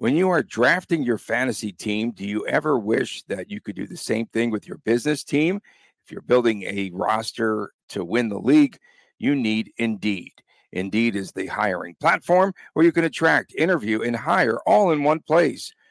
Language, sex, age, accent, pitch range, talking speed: English, male, 50-69, American, 110-150 Hz, 190 wpm